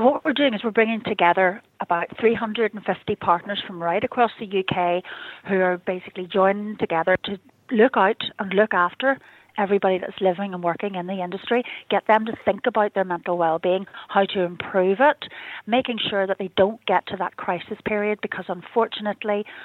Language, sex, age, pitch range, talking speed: English, female, 30-49, 180-215 Hz, 175 wpm